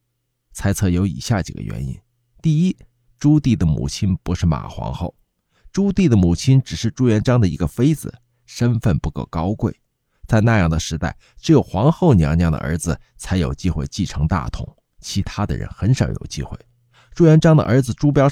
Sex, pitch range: male, 90-125 Hz